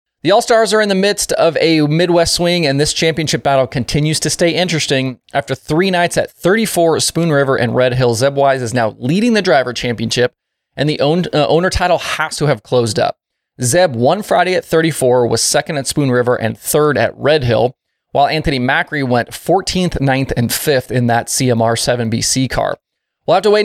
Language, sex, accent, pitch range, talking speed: English, male, American, 125-170 Hz, 200 wpm